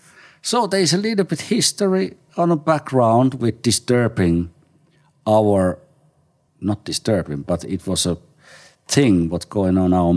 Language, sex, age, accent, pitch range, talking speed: English, male, 50-69, Finnish, 85-120 Hz, 140 wpm